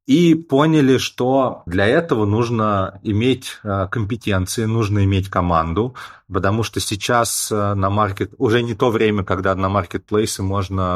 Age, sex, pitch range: 30-49, male, 90-115 Hz